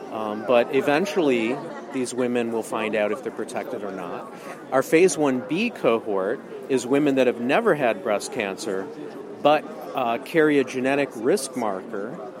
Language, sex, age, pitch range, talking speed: English, male, 50-69, 120-140 Hz, 155 wpm